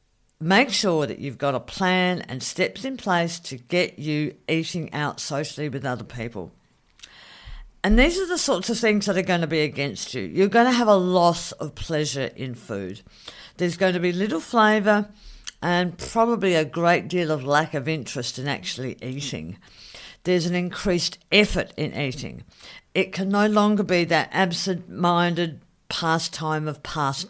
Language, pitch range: English, 150-210 Hz